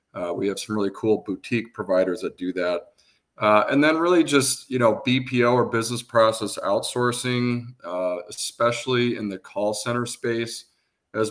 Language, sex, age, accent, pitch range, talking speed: English, male, 40-59, American, 95-115 Hz, 165 wpm